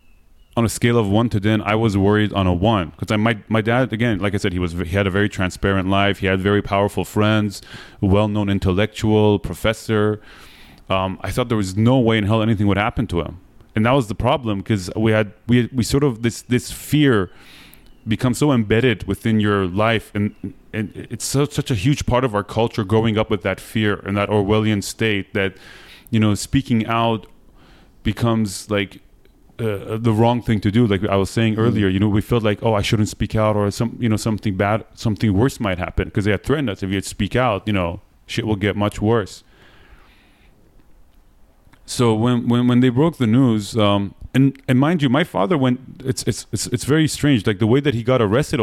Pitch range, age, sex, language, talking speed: 100-120 Hz, 30-49, male, English, 220 wpm